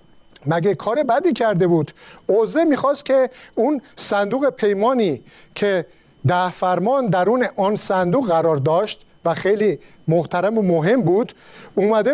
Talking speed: 130 wpm